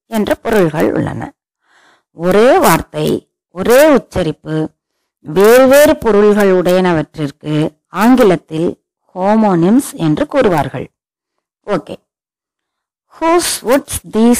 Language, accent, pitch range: Tamil, native, 180-260 Hz